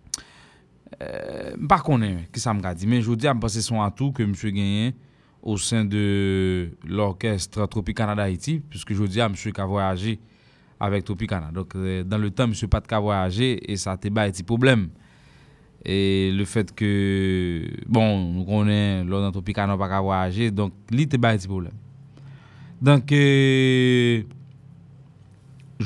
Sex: male